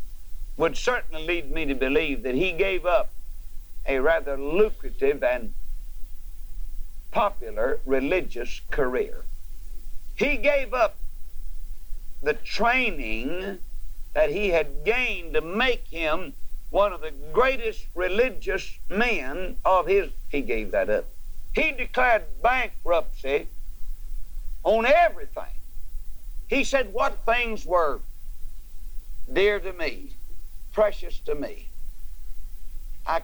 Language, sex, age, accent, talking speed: English, male, 60-79, American, 105 wpm